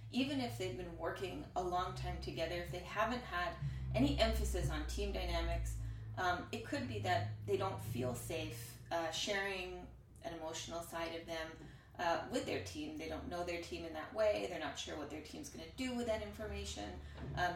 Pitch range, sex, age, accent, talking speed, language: 150-195 Hz, female, 30-49, American, 200 wpm, English